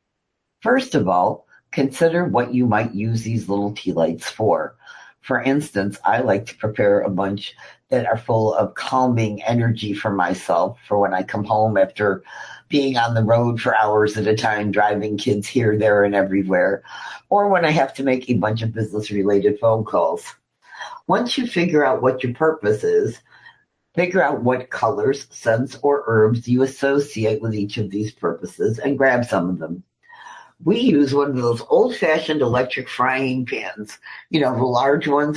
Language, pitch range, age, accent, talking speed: English, 110-140 Hz, 50-69, American, 175 wpm